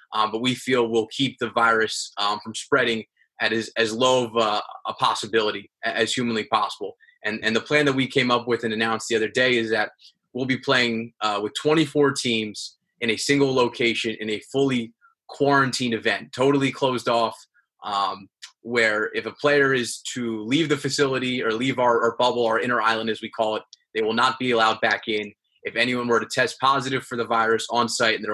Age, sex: 20-39, male